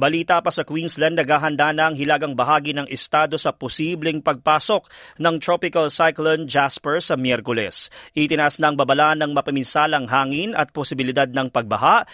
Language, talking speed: Filipino, 150 wpm